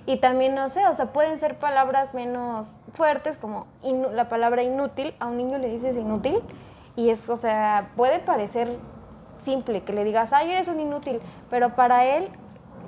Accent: Mexican